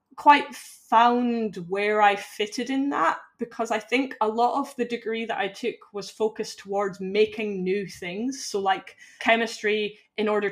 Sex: female